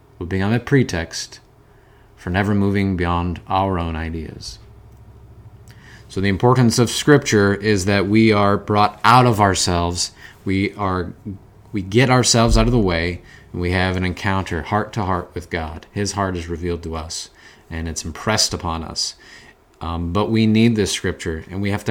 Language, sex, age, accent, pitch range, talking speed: English, male, 30-49, American, 90-110 Hz, 175 wpm